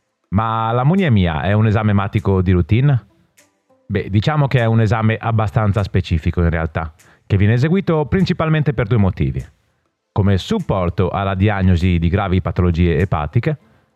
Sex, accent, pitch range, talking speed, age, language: male, native, 95-145 Hz, 140 wpm, 30-49, Italian